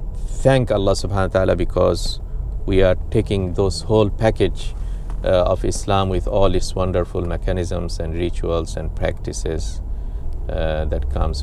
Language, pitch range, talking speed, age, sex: English, 85-115 Hz, 140 wpm, 50-69, male